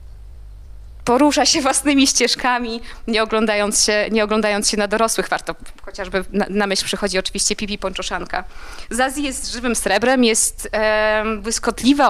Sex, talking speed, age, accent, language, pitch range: female, 135 wpm, 20-39, native, Polish, 210-245 Hz